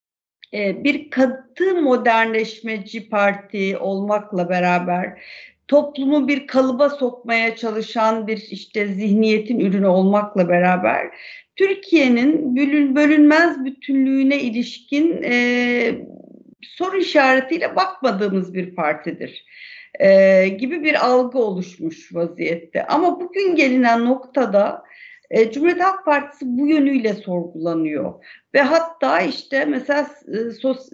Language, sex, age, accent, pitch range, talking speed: Turkish, female, 60-79, native, 195-270 Hz, 95 wpm